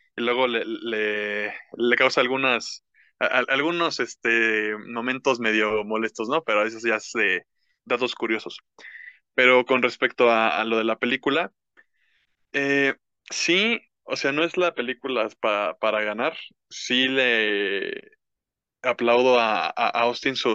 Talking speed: 145 wpm